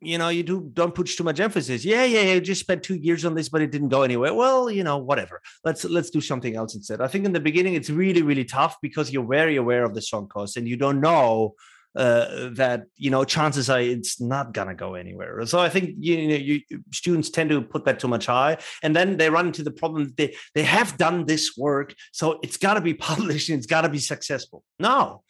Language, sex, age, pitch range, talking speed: German, male, 30-49, 130-175 Hz, 255 wpm